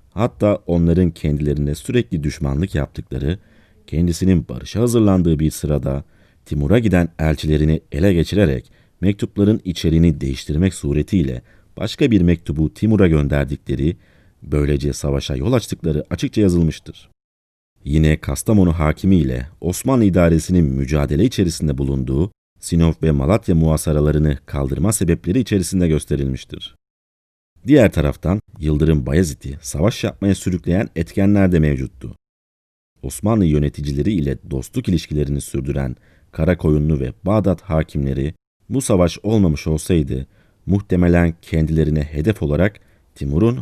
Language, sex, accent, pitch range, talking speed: Turkish, male, native, 75-95 Hz, 105 wpm